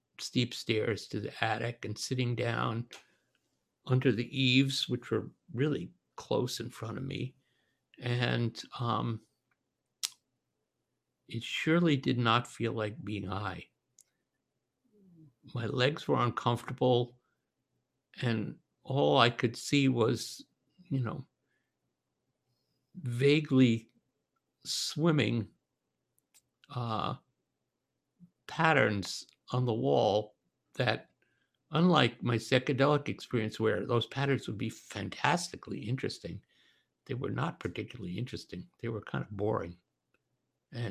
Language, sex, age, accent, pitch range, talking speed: English, male, 60-79, American, 115-140 Hz, 105 wpm